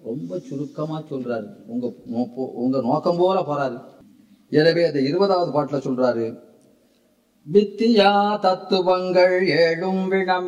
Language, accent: Tamil, native